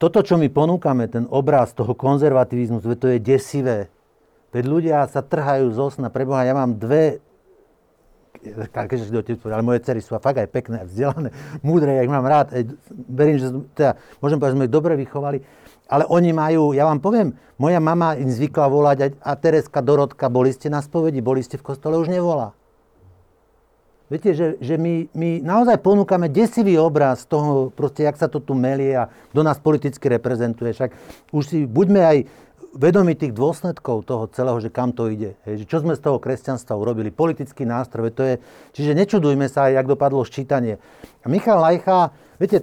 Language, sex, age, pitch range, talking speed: Slovak, male, 60-79, 130-170 Hz, 175 wpm